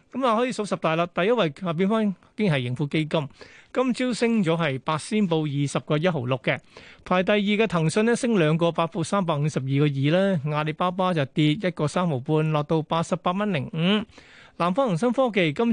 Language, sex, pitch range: Chinese, male, 155-195 Hz